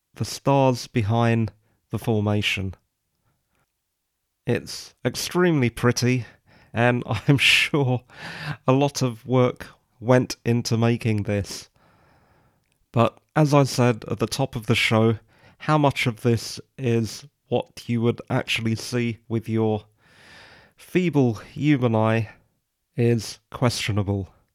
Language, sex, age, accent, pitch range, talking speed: English, male, 30-49, British, 110-130 Hz, 110 wpm